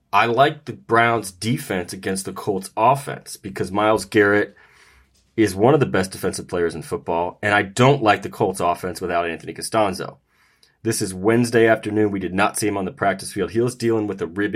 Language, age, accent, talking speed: English, 30-49, American, 205 wpm